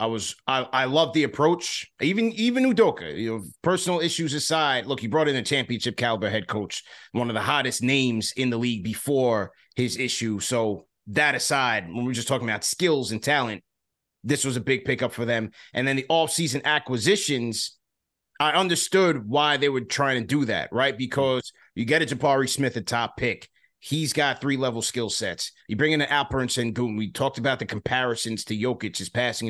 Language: English